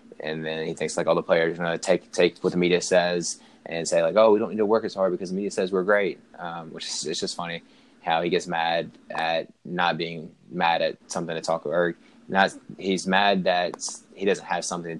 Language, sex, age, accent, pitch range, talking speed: English, male, 20-39, American, 80-90 Hz, 240 wpm